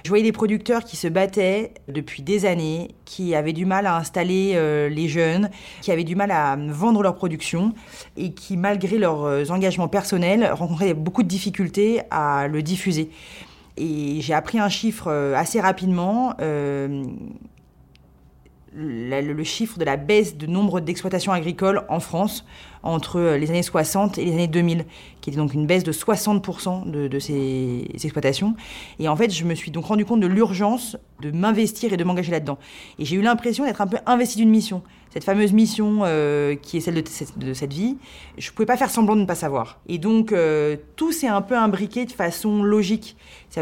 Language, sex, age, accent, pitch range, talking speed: French, female, 30-49, French, 160-210 Hz, 190 wpm